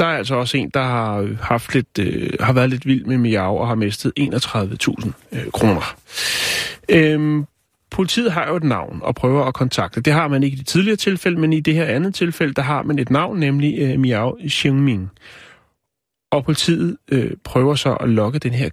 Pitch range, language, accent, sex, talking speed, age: 120-155 Hz, Danish, native, male, 205 wpm, 30-49